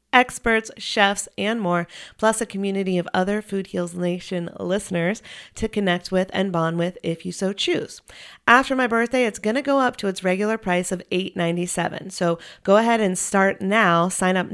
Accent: American